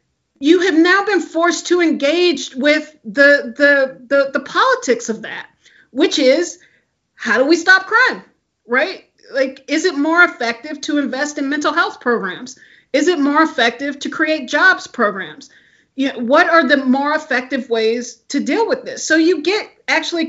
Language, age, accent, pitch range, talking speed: English, 40-59, American, 265-405 Hz, 170 wpm